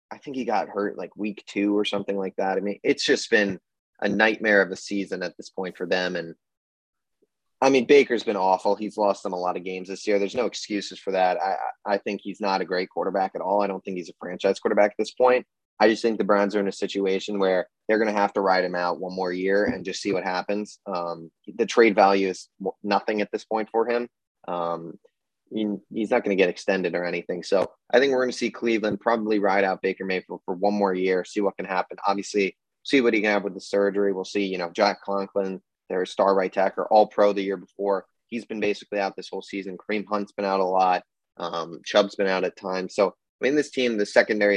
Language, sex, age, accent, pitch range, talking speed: English, male, 20-39, American, 95-105 Hz, 250 wpm